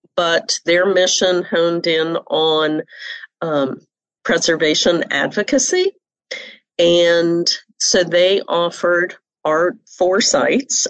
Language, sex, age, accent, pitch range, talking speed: English, female, 40-59, American, 155-190 Hz, 90 wpm